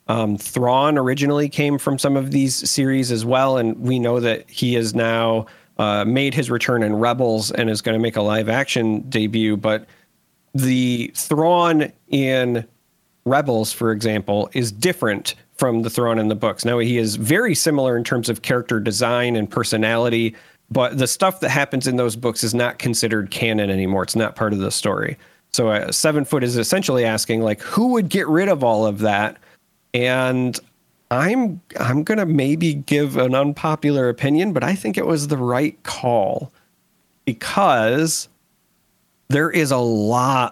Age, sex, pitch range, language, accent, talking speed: 40-59, male, 110-135 Hz, English, American, 175 wpm